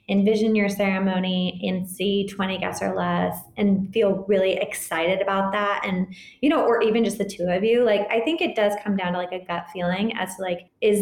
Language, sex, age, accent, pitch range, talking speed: English, female, 20-39, American, 185-225 Hz, 225 wpm